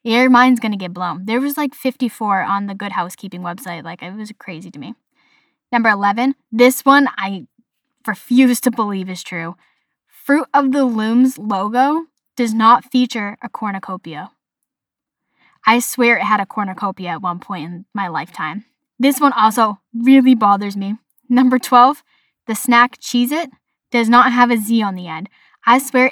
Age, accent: 10-29, American